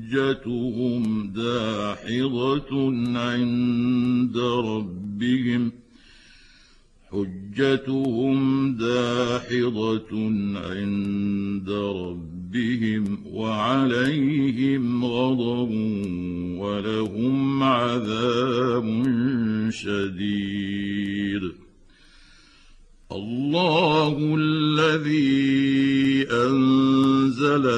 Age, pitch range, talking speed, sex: 60-79, 115-135 Hz, 30 wpm, male